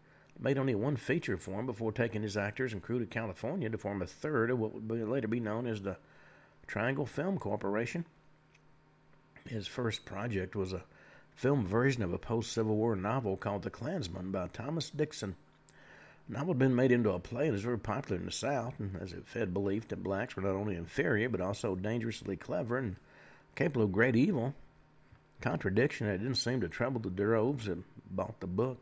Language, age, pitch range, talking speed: English, 50-69, 95-125 Hz, 200 wpm